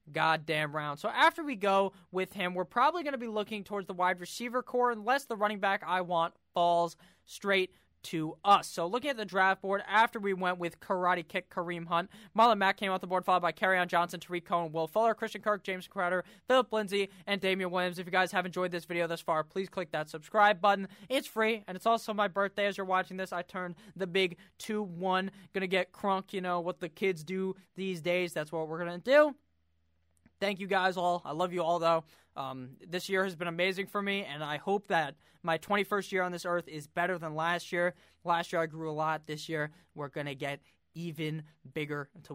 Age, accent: 20-39, American